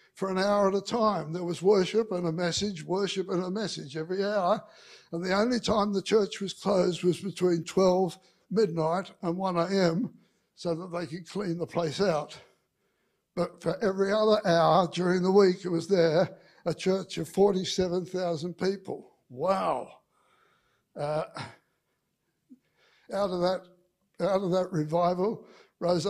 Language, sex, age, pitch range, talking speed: English, male, 60-79, 170-205 Hz, 145 wpm